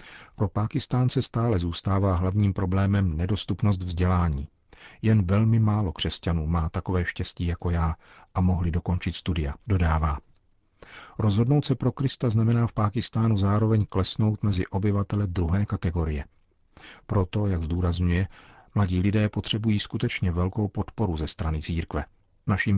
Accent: native